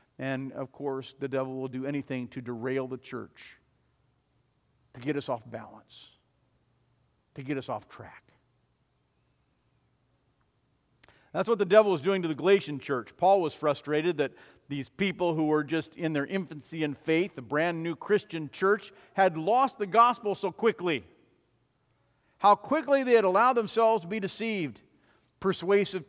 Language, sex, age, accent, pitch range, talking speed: English, male, 50-69, American, 125-190 Hz, 155 wpm